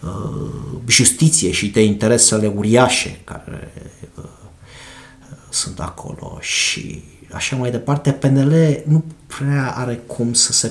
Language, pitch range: Romanian, 115-140 Hz